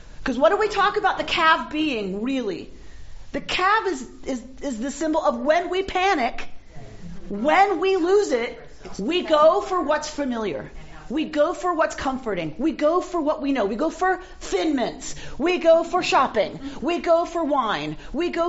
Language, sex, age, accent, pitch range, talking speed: English, female, 40-59, American, 265-370 Hz, 180 wpm